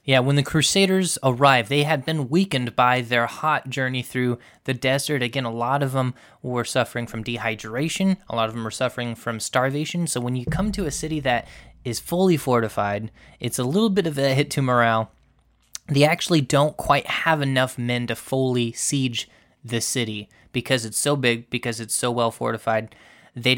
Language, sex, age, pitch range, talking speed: English, male, 20-39, 120-150 Hz, 190 wpm